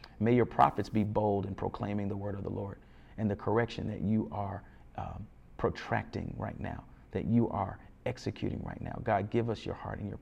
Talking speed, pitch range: 205 wpm, 95-115 Hz